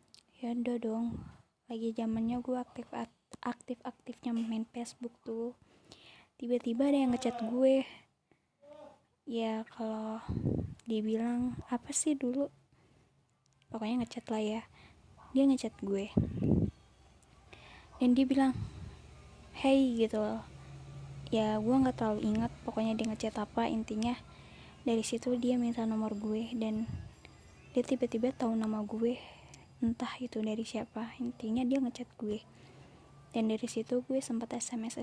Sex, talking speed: female, 120 wpm